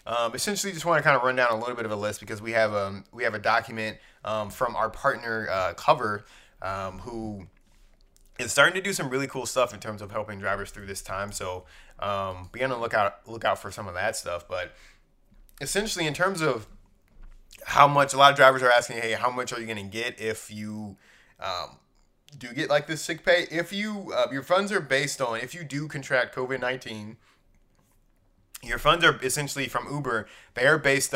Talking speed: 220 wpm